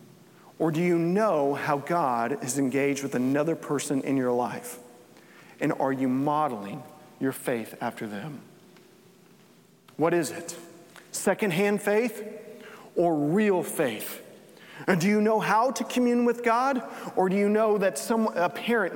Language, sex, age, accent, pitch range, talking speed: English, male, 40-59, American, 155-205 Hz, 150 wpm